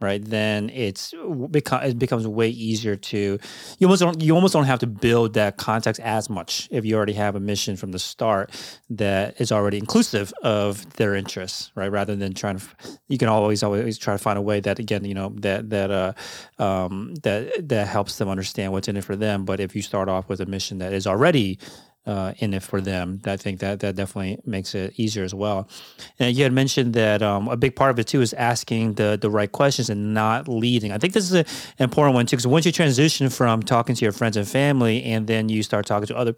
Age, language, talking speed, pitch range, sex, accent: 30-49, English, 235 wpm, 100-125 Hz, male, American